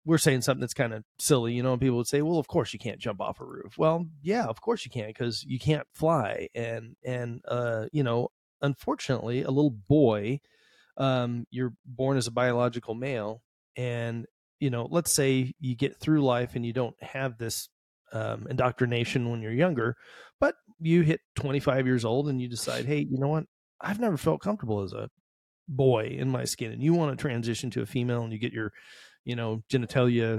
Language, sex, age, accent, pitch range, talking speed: English, male, 30-49, American, 120-145 Hz, 205 wpm